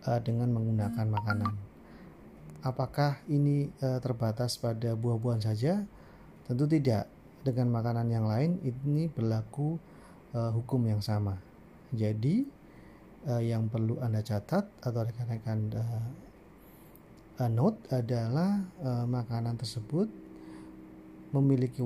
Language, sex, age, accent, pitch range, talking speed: Indonesian, male, 40-59, native, 115-130 Hz, 90 wpm